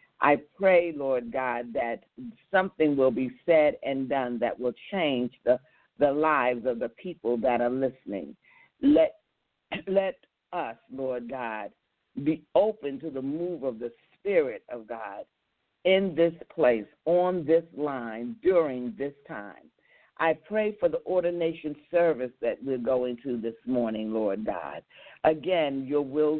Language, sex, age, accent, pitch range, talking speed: English, female, 50-69, American, 125-180 Hz, 145 wpm